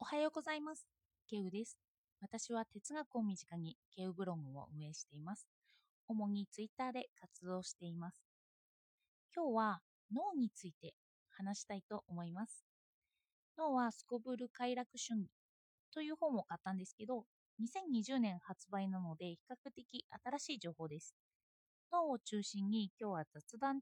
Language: Japanese